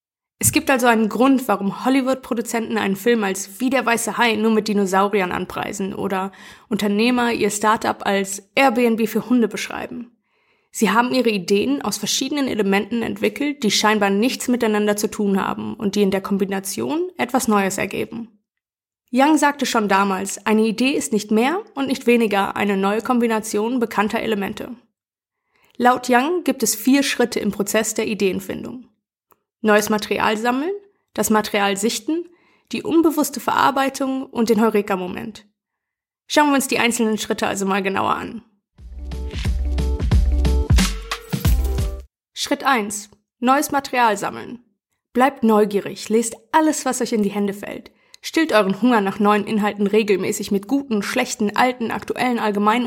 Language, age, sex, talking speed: German, 20-39, female, 145 wpm